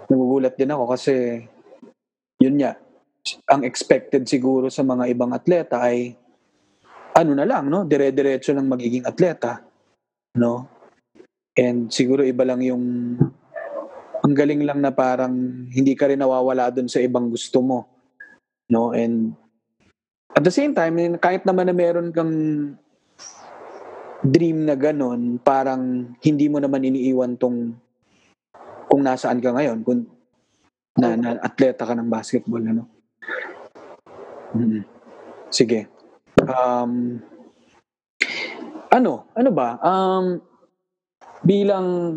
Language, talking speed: Filipino, 115 wpm